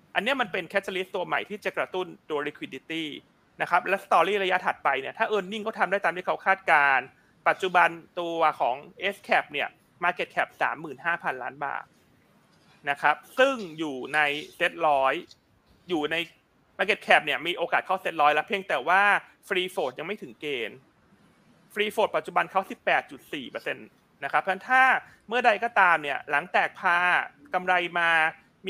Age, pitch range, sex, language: 30-49, 160-220 Hz, male, Thai